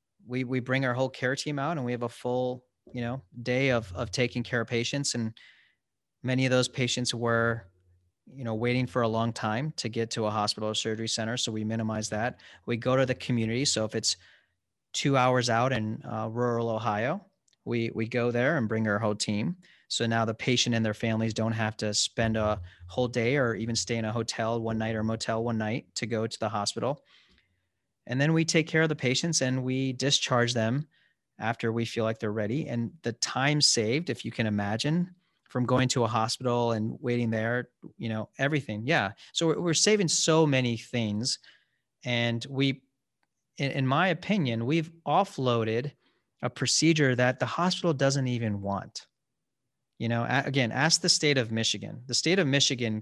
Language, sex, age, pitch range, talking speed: English, male, 30-49, 110-135 Hz, 195 wpm